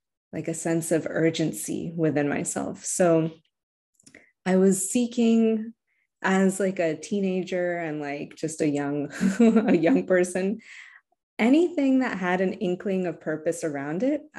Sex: female